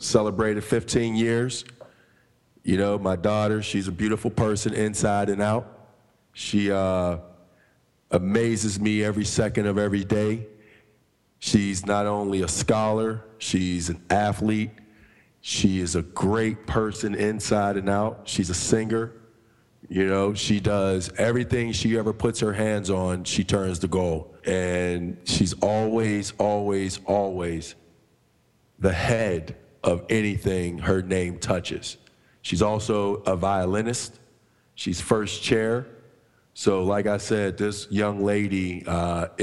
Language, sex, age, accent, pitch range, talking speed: English, male, 40-59, American, 95-115 Hz, 130 wpm